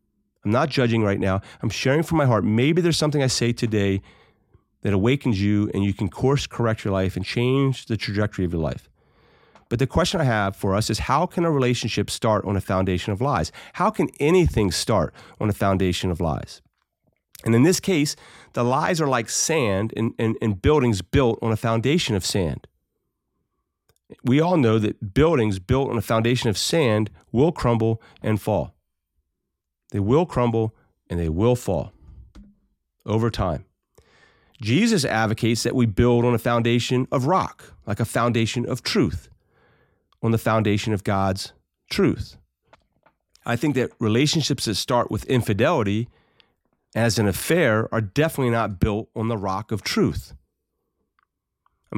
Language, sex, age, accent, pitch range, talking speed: English, male, 40-59, American, 100-125 Hz, 165 wpm